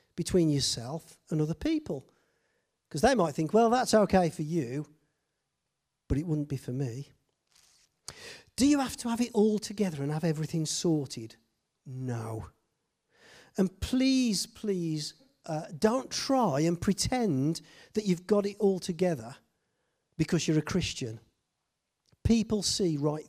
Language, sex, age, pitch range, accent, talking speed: English, male, 40-59, 135-205 Hz, British, 140 wpm